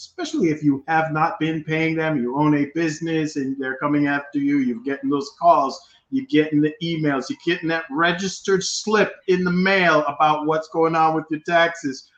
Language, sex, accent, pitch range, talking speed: English, male, American, 135-160 Hz, 195 wpm